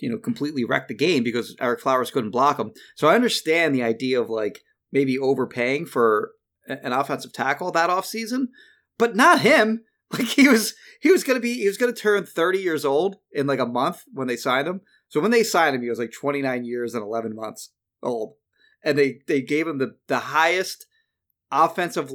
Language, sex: English, male